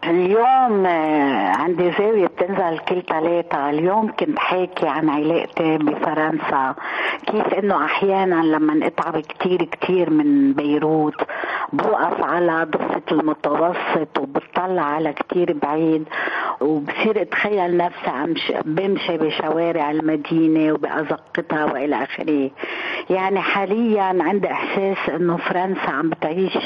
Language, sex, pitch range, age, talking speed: Arabic, female, 160-200 Hz, 50-69, 105 wpm